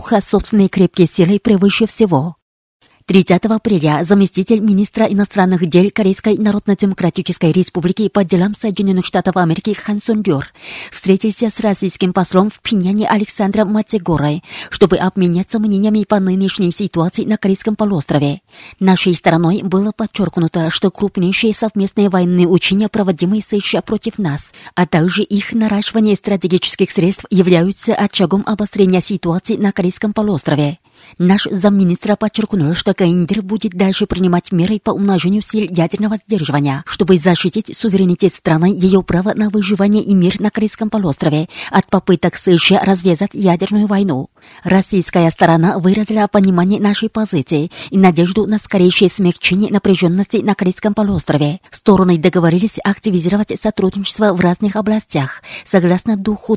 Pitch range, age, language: 180-210 Hz, 20-39, Russian